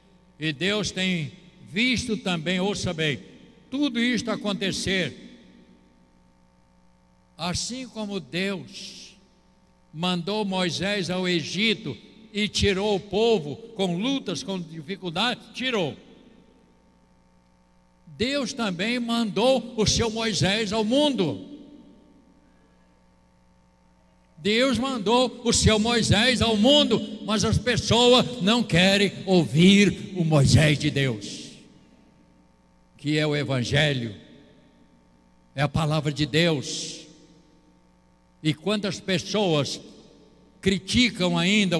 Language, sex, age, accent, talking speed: Portuguese, male, 60-79, Brazilian, 95 wpm